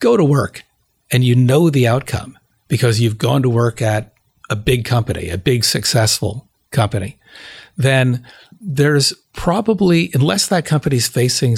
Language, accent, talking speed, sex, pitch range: English, American, 145 wpm, male, 110-130 Hz